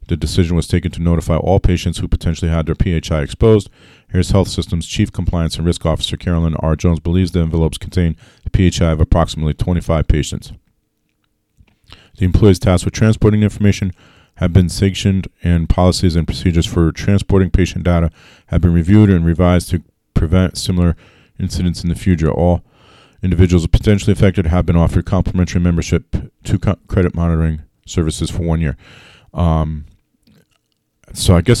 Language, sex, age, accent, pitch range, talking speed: English, male, 40-59, American, 85-95 Hz, 165 wpm